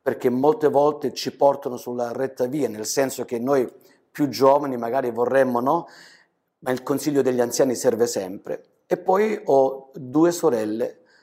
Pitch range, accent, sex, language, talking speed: 130-170 Hz, native, male, Italian, 155 wpm